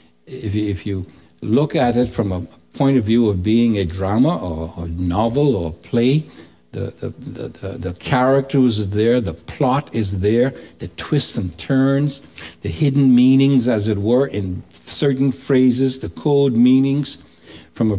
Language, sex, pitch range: English, male, 85-125 Hz